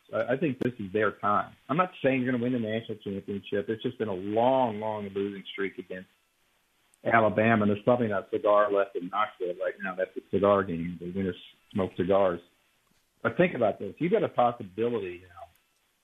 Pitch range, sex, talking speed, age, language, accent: 100-125 Hz, male, 205 wpm, 50-69, English, American